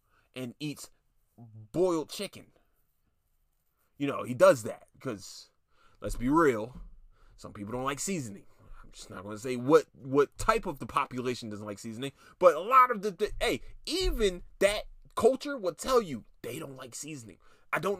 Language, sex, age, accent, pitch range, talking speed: English, male, 20-39, American, 130-210 Hz, 175 wpm